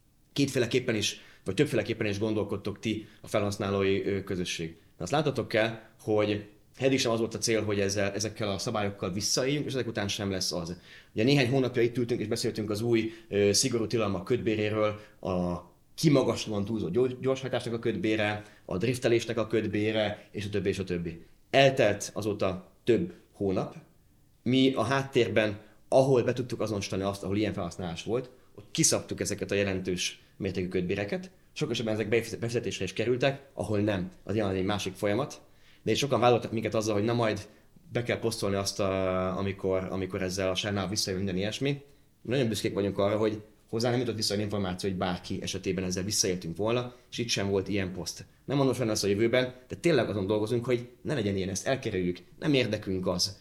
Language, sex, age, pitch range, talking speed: Hungarian, male, 30-49, 100-120 Hz, 180 wpm